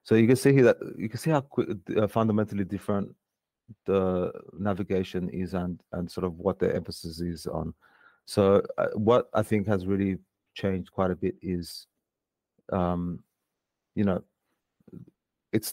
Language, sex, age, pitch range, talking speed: English, male, 30-49, 90-100 Hz, 155 wpm